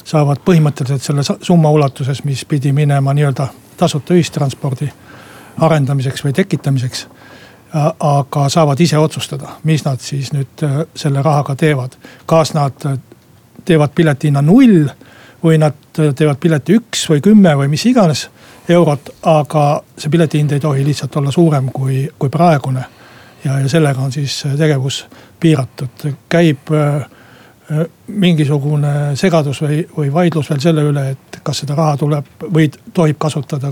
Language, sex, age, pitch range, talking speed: Finnish, male, 60-79, 140-160 Hz, 135 wpm